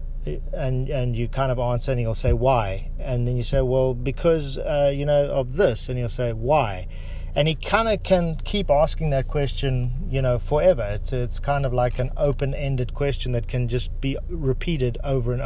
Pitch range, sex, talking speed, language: 120-150 Hz, male, 200 wpm, English